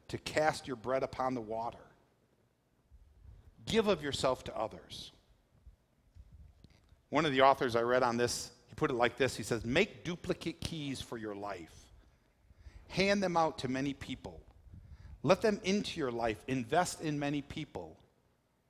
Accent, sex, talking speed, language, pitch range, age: American, male, 155 wpm, English, 110-150 Hz, 50-69